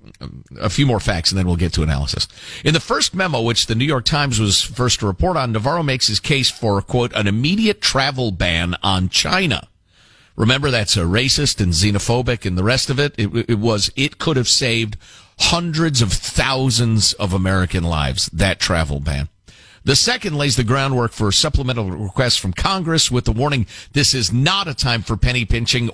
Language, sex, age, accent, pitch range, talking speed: English, male, 50-69, American, 100-145 Hz, 195 wpm